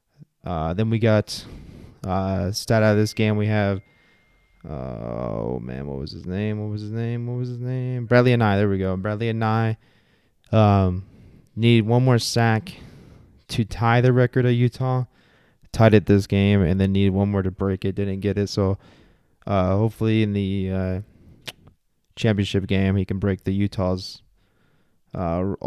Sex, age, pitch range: male, 20-39, 95-110 Hz